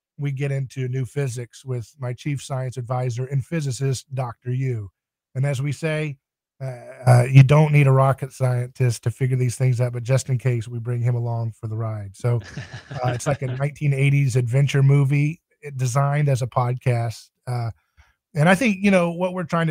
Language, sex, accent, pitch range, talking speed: English, male, American, 130-150 Hz, 190 wpm